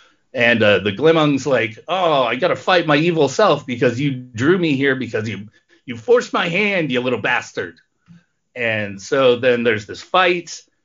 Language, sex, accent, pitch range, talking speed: English, male, American, 125-170 Hz, 185 wpm